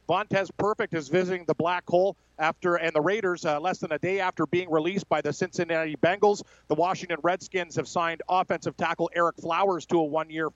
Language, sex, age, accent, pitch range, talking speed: English, male, 40-59, American, 165-185 Hz, 200 wpm